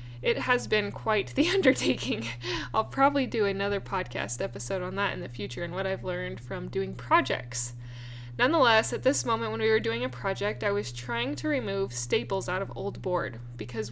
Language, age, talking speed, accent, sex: English, 10-29, 195 wpm, American, female